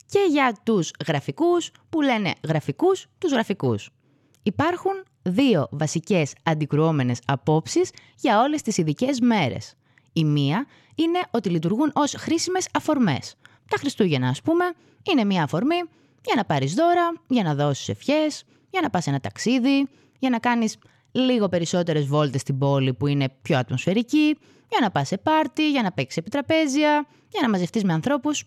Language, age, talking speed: Greek, 20-39, 155 wpm